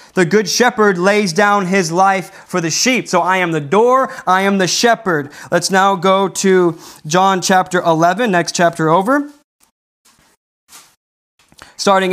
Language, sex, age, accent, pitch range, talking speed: English, male, 20-39, American, 150-205 Hz, 150 wpm